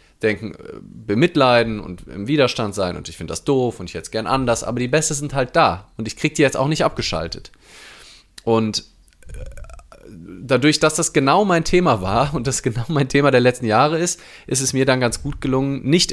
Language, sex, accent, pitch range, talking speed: German, male, German, 115-150 Hz, 210 wpm